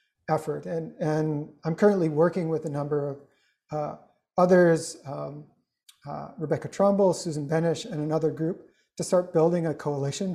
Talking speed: 150 wpm